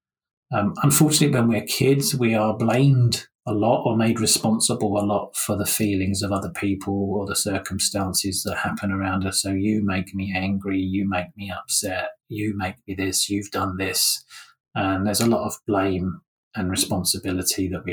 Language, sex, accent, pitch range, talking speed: English, male, British, 100-125 Hz, 180 wpm